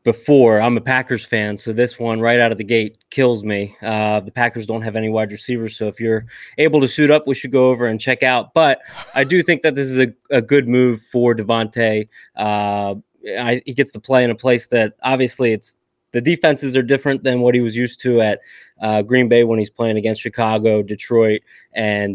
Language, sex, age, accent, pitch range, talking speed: English, male, 20-39, American, 110-130 Hz, 225 wpm